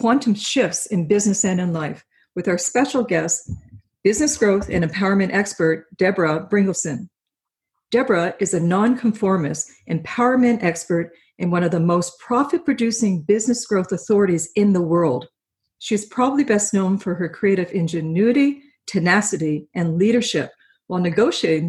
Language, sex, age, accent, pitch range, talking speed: English, female, 50-69, American, 175-230 Hz, 140 wpm